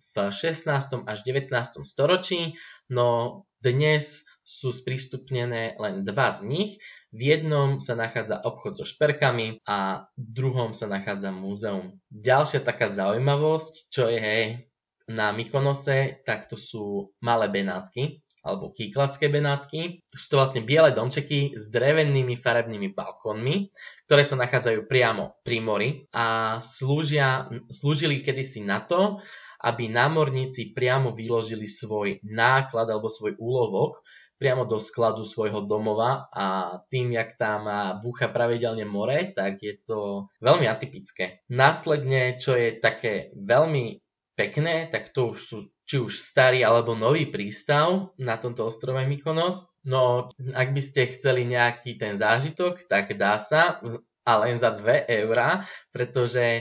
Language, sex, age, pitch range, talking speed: Slovak, male, 20-39, 115-140 Hz, 135 wpm